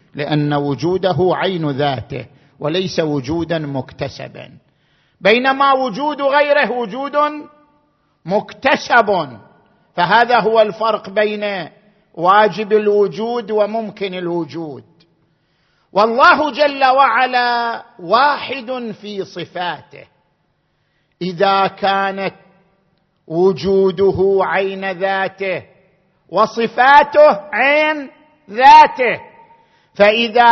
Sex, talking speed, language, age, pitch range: male, 70 wpm, Arabic, 50-69, 180-240 Hz